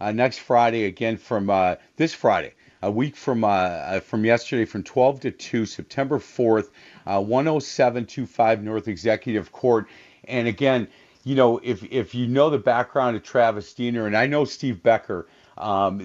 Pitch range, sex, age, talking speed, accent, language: 105-130 Hz, male, 50-69, 165 wpm, American, English